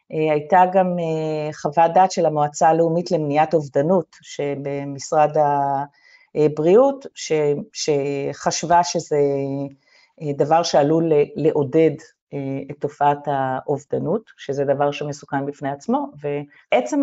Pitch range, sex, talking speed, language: 150-190 Hz, female, 90 wpm, Hebrew